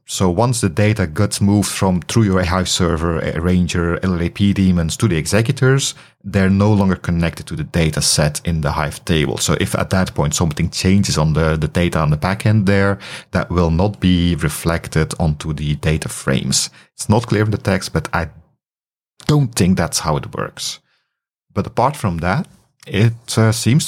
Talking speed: 185 wpm